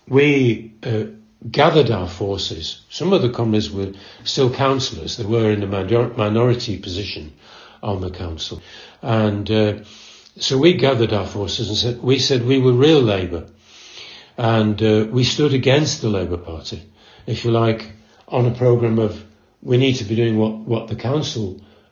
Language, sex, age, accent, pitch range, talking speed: English, male, 60-79, British, 105-125 Hz, 165 wpm